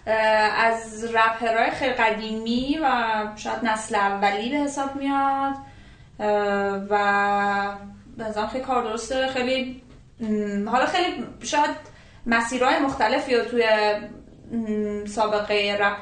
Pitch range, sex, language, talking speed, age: 195-235 Hz, female, English, 95 wpm, 20-39